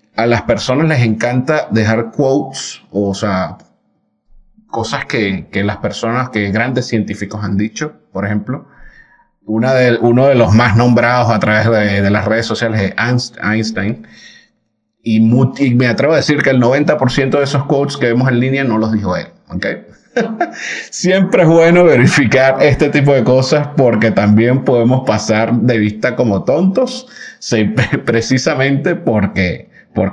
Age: 30-49